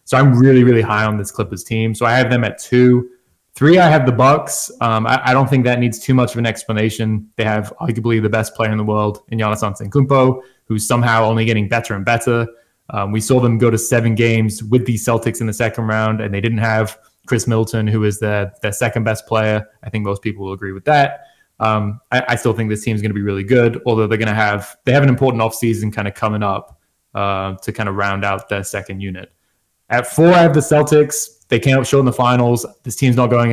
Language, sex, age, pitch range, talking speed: English, male, 20-39, 110-130 Hz, 250 wpm